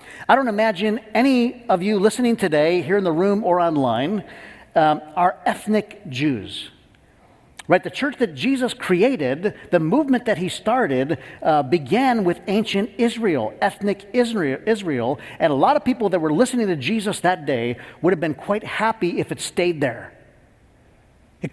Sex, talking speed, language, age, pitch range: male, 160 wpm, English, 50-69, 145-220 Hz